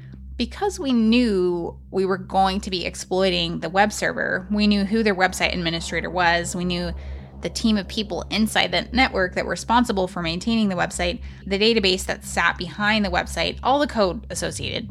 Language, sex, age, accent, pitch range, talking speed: English, female, 20-39, American, 170-210 Hz, 185 wpm